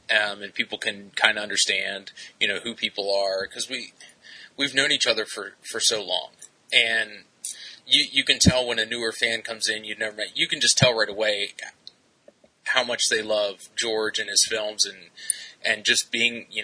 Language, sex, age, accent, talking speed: English, male, 20-39, American, 200 wpm